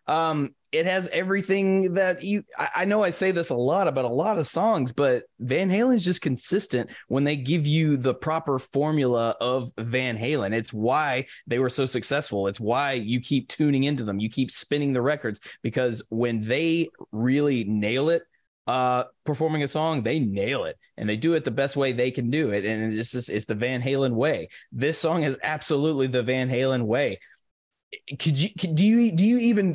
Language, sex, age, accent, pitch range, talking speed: English, male, 20-39, American, 130-170 Hz, 205 wpm